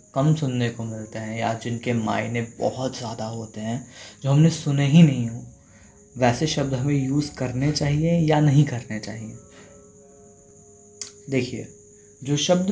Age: 20-39